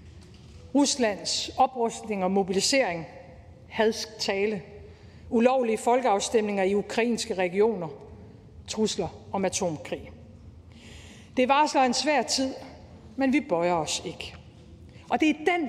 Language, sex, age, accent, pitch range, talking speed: Danish, female, 50-69, native, 185-245 Hz, 105 wpm